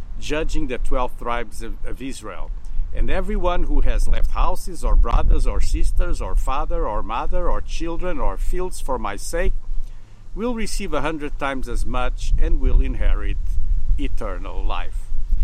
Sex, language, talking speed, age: male, English, 155 wpm, 50-69